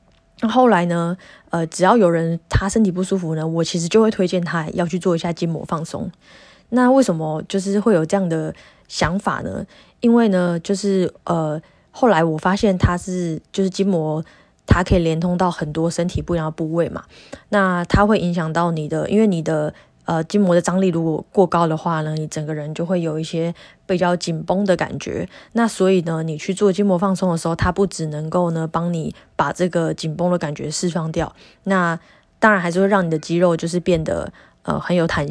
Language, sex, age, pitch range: Chinese, female, 20-39, 160-190 Hz